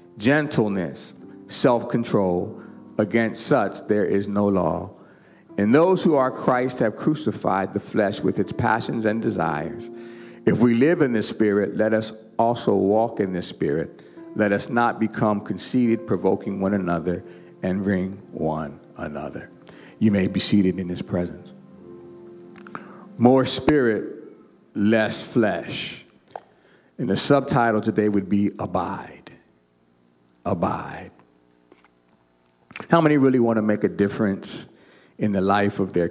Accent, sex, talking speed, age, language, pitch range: American, male, 130 wpm, 50-69, English, 95-115 Hz